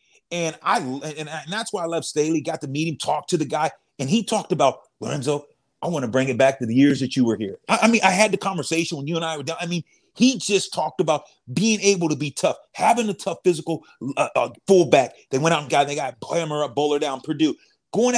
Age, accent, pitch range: 30-49, American, 155-215 Hz